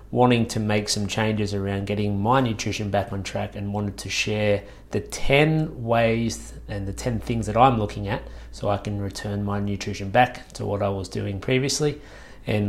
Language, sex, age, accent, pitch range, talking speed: English, male, 30-49, Australian, 100-125 Hz, 195 wpm